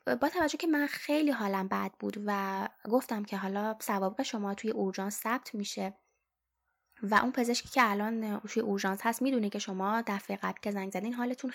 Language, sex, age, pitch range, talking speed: Persian, female, 10-29, 205-245 Hz, 180 wpm